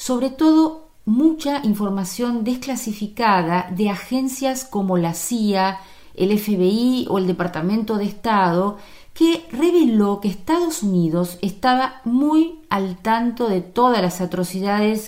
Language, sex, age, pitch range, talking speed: Spanish, female, 40-59, 170-230 Hz, 120 wpm